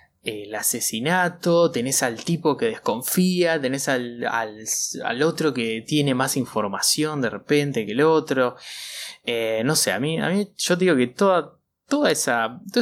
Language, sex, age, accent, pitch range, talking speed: Spanish, male, 20-39, Argentinian, 110-155 Hz, 170 wpm